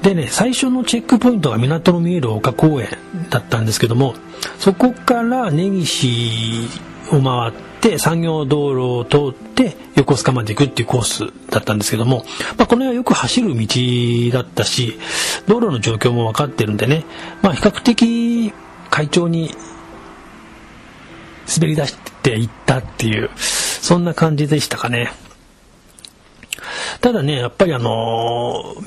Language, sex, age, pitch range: Japanese, male, 40-59, 115-180 Hz